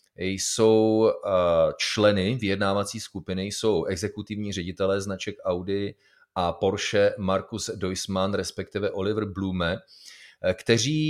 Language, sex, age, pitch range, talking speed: Czech, male, 30-49, 100-115 Hz, 90 wpm